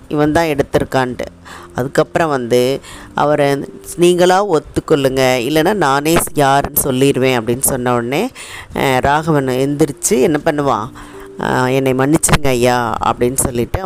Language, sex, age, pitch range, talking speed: Tamil, female, 20-39, 125-155 Hz, 105 wpm